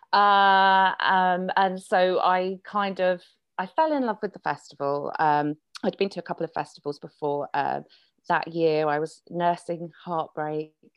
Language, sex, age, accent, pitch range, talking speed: English, female, 30-49, British, 155-185 Hz, 170 wpm